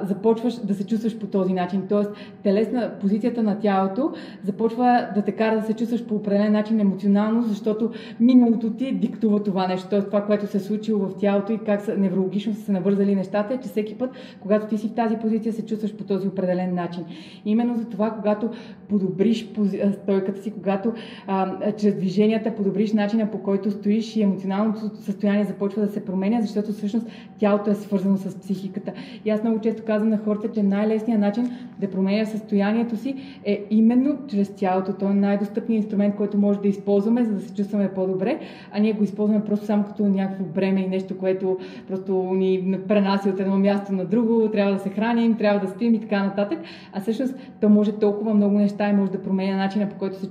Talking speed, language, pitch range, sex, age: 200 wpm, Bulgarian, 195-220 Hz, female, 20-39